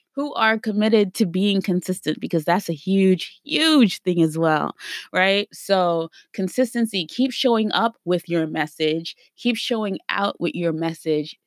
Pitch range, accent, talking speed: 155-205 Hz, American, 150 wpm